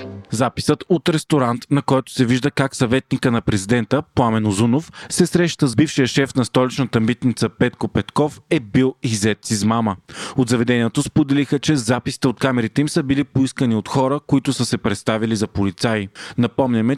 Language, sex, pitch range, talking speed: Bulgarian, male, 115-145 Hz, 170 wpm